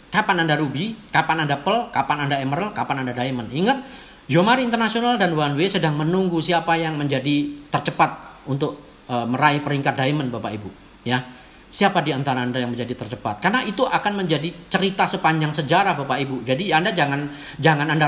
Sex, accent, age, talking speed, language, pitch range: male, native, 40-59, 175 wpm, Indonesian, 135-180 Hz